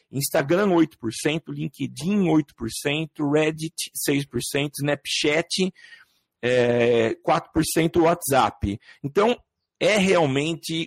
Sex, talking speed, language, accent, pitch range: male, 65 wpm, Portuguese, Brazilian, 130-165 Hz